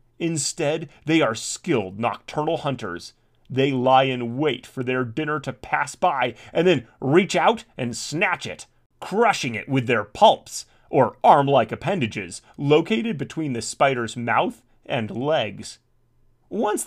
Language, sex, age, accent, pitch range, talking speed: English, male, 30-49, American, 120-175 Hz, 140 wpm